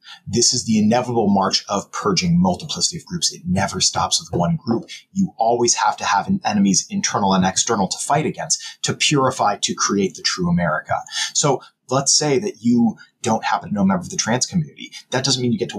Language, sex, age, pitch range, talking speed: English, male, 30-49, 115-185 Hz, 210 wpm